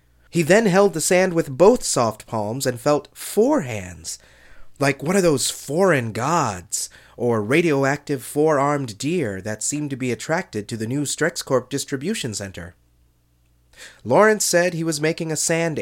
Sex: male